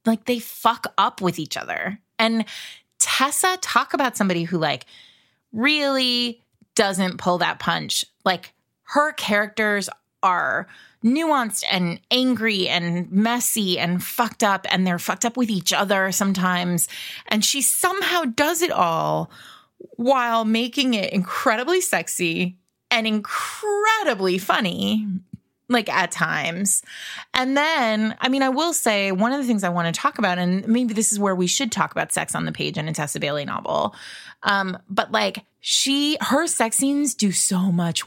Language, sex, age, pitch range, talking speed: English, female, 20-39, 185-245 Hz, 160 wpm